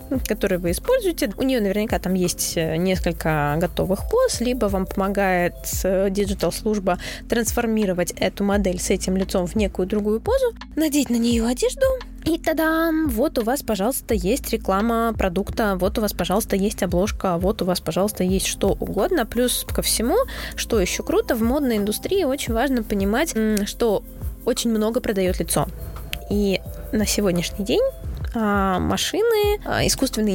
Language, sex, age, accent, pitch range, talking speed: Russian, female, 20-39, native, 195-265 Hz, 145 wpm